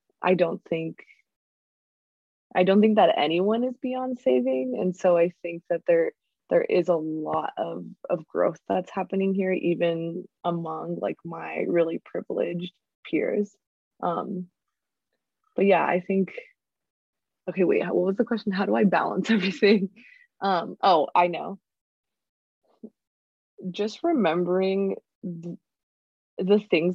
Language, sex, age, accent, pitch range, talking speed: English, female, 20-39, American, 170-210 Hz, 130 wpm